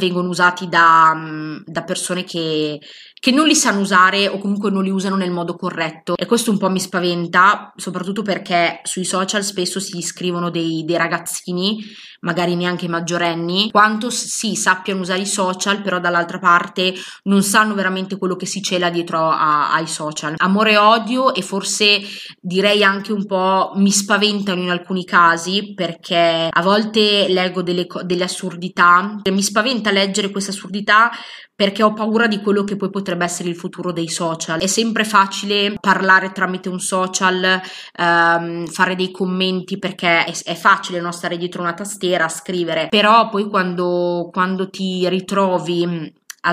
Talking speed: 165 wpm